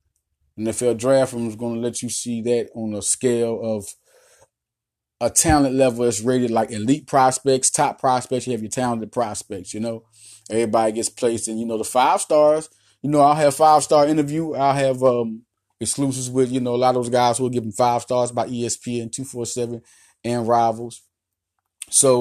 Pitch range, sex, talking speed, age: 115-135 Hz, male, 185 wpm, 20-39